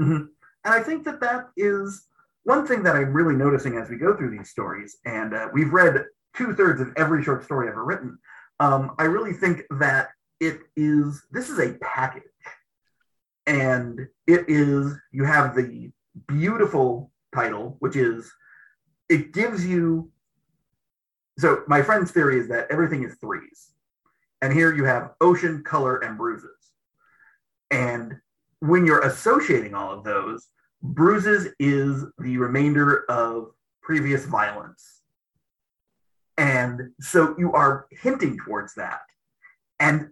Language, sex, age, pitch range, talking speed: English, male, 30-49, 135-175 Hz, 140 wpm